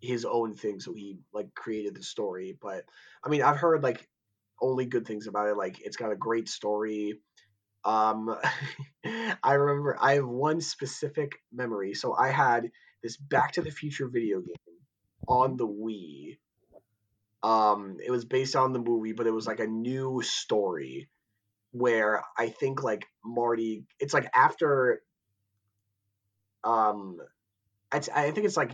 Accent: American